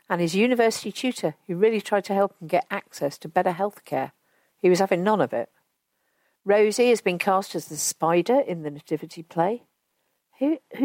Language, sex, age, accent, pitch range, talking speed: English, female, 50-69, British, 160-230 Hz, 190 wpm